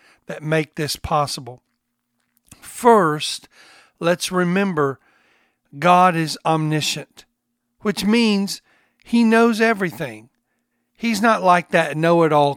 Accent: American